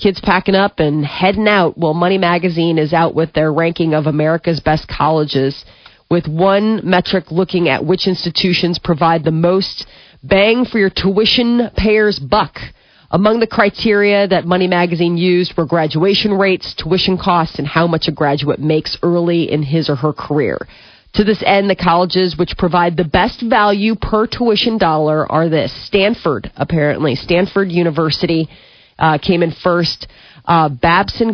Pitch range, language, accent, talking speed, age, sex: 155-190 Hz, English, American, 160 wpm, 30-49, female